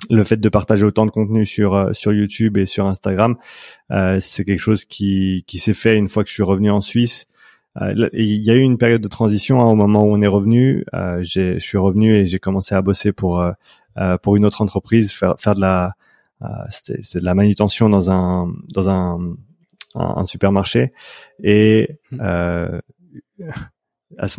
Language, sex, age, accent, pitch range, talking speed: French, male, 30-49, French, 95-110 Hz, 200 wpm